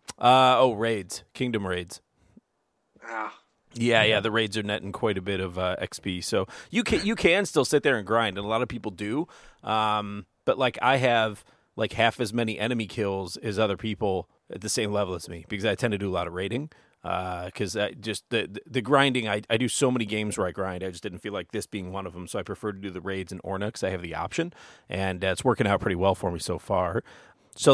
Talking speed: 245 wpm